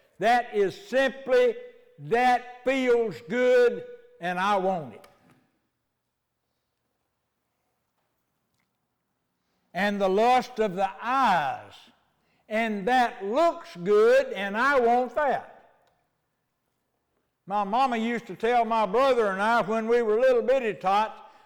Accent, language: American, English